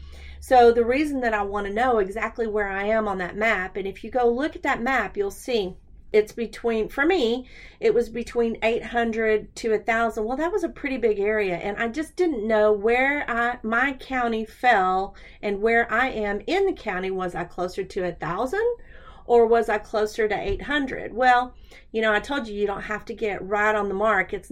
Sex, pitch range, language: female, 200-250 Hz, English